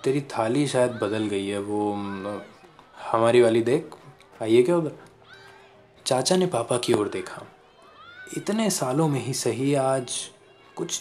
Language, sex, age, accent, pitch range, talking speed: Hindi, male, 20-39, native, 115-160 Hz, 140 wpm